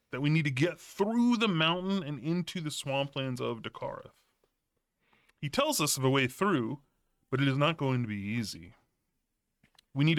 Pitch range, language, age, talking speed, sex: 135-200 Hz, English, 30-49, 175 wpm, female